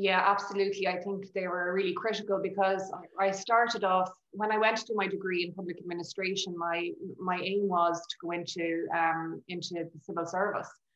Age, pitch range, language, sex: 20-39, 170-190 Hz, English, female